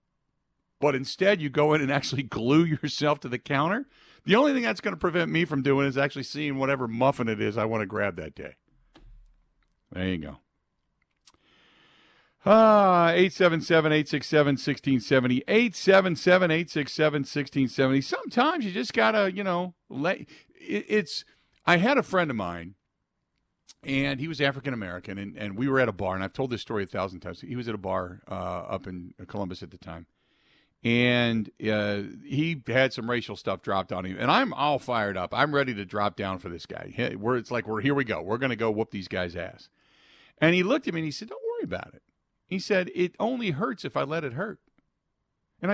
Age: 50-69